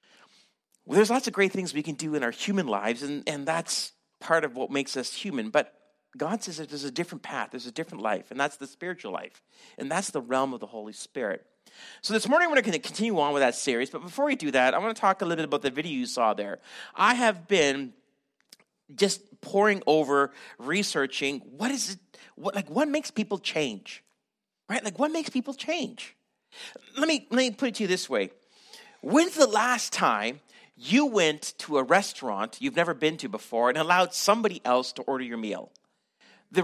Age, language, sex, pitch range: 40-59, English, male, 145-230 Hz